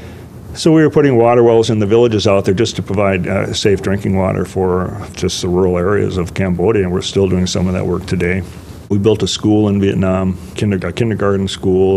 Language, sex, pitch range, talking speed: English, male, 90-100 Hz, 215 wpm